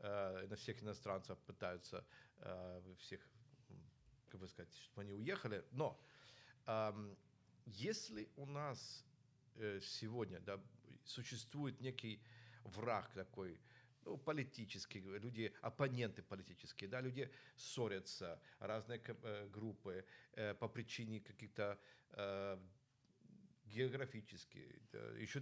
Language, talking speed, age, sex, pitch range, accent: Ukrainian, 85 wpm, 50-69, male, 105-130 Hz, native